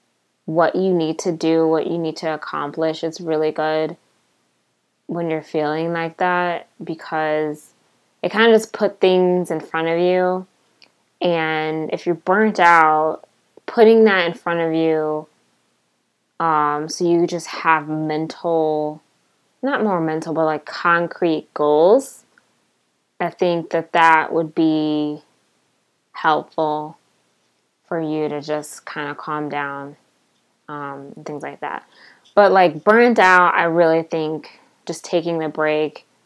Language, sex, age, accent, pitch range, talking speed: English, female, 20-39, American, 155-175 Hz, 135 wpm